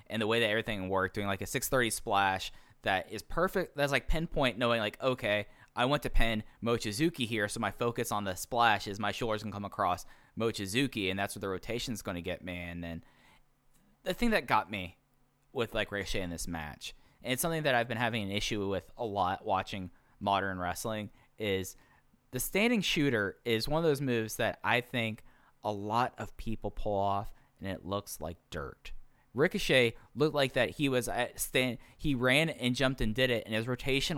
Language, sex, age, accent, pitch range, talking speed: English, male, 10-29, American, 100-130 Hz, 210 wpm